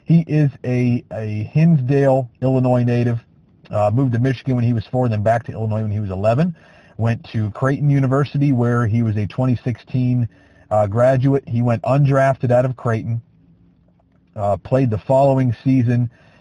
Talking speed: 165 wpm